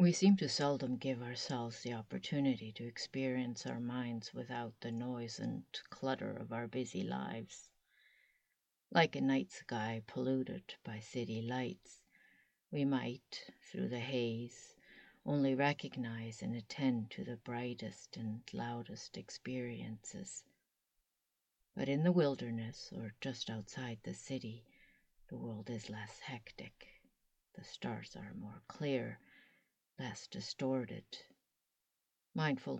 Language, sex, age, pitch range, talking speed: English, female, 50-69, 115-130 Hz, 120 wpm